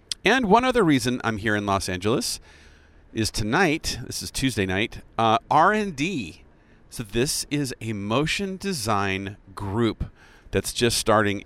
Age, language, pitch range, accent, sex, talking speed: 40-59, English, 90-115 Hz, American, male, 145 wpm